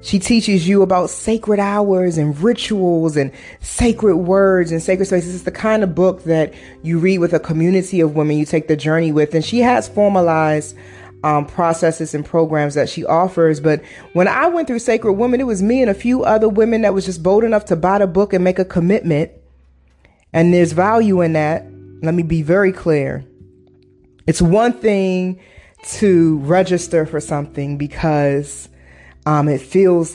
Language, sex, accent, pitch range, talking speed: English, female, American, 155-190 Hz, 185 wpm